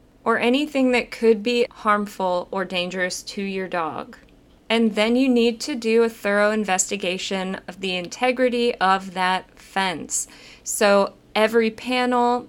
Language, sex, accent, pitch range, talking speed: English, female, American, 190-225 Hz, 140 wpm